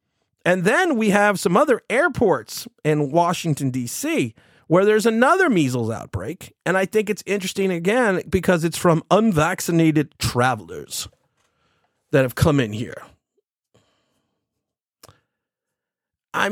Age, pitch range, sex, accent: 30-49, 130-195 Hz, male, American